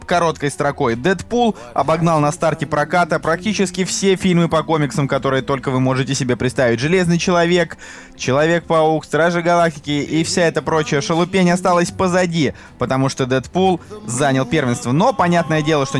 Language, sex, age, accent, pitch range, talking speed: Russian, male, 20-39, native, 130-170 Hz, 150 wpm